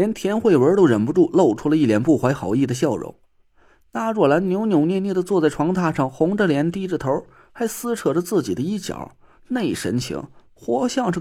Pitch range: 135-210 Hz